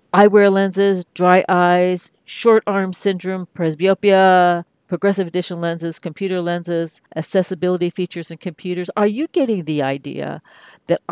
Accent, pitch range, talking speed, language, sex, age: American, 150-185 Hz, 125 wpm, English, female, 50-69